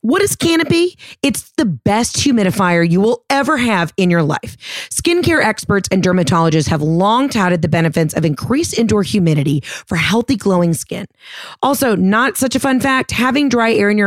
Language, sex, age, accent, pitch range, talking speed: English, female, 30-49, American, 180-250 Hz, 180 wpm